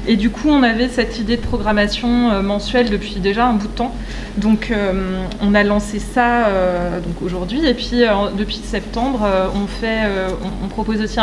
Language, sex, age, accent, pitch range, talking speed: French, female, 20-39, French, 195-230 Hz, 200 wpm